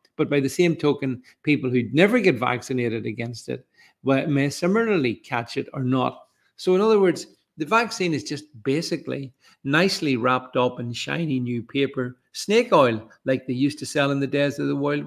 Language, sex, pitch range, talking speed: English, male, 125-160 Hz, 195 wpm